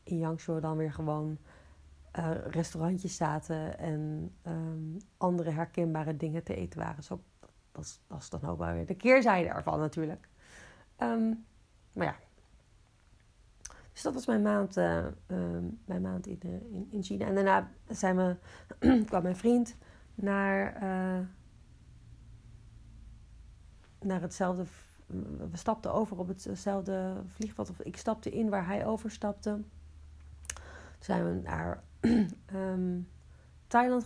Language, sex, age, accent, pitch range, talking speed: Dutch, female, 40-59, Dutch, 155-200 Hz, 135 wpm